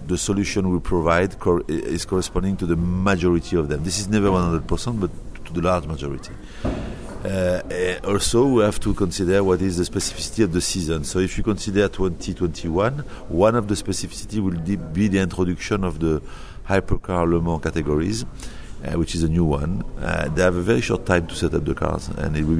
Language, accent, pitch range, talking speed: English, French, 80-95 Hz, 195 wpm